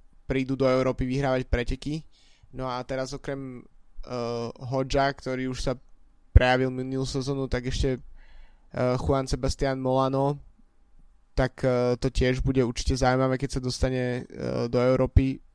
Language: Slovak